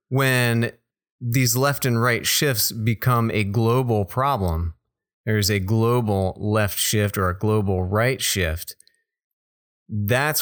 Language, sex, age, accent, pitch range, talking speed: English, male, 30-49, American, 100-125 Hz, 125 wpm